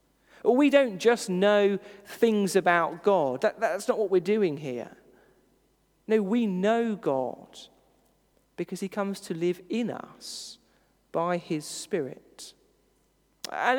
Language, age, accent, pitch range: English, 40-59, British, 175-235 Hz